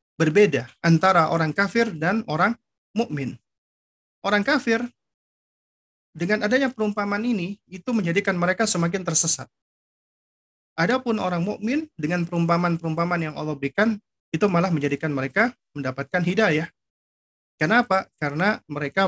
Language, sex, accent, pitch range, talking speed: Indonesian, male, native, 150-205 Hz, 110 wpm